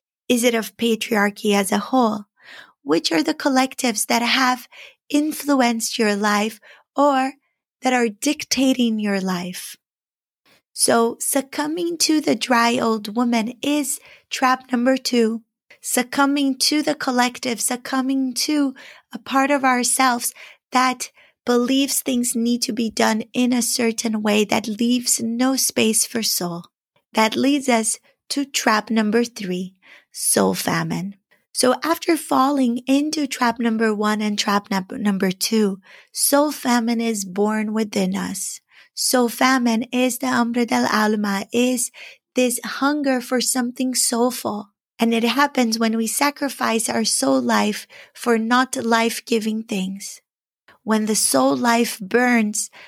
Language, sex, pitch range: English, female, 220-260 Hz